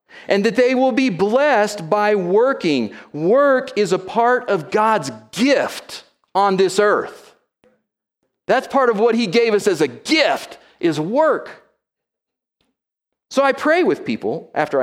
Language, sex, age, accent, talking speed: English, male, 40-59, American, 145 wpm